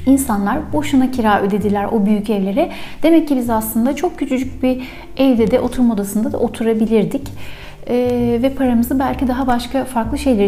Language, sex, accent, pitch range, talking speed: Turkish, female, native, 200-250 Hz, 160 wpm